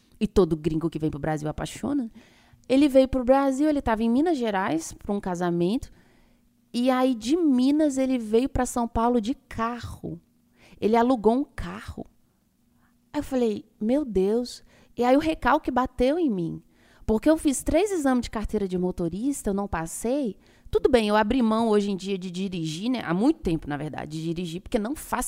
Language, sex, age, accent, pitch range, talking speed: Portuguese, female, 30-49, Brazilian, 185-265 Hz, 195 wpm